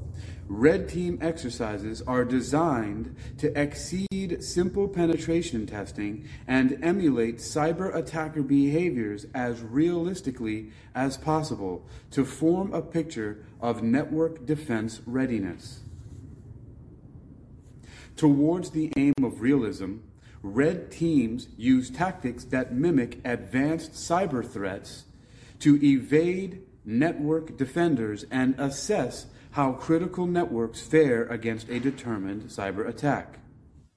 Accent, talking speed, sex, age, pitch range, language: American, 100 wpm, male, 40-59, 115-155 Hz, English